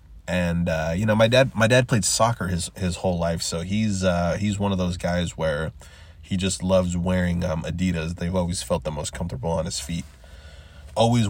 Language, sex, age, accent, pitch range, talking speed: English, male, 20-39, American, 85-110 Hz, 205 wpm